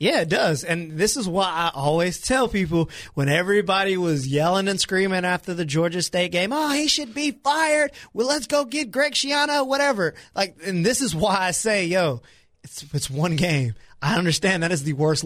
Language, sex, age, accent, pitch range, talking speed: English, male, 20-39, American, 150-185 Hz, 205 wpm